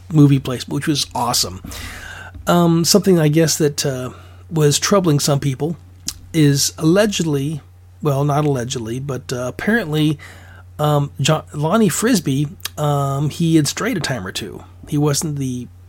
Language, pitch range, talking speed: English, 105-160 Hz, 145 wpm